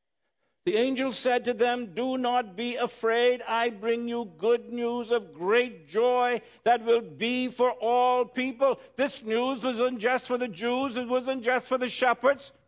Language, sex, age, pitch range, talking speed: English, male, 60-79, 200-250 Hz, 170 wpm